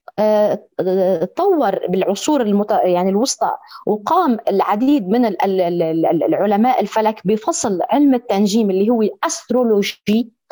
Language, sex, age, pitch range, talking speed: Arabic, female, 30-49, 210-280 Hz, 90 wpm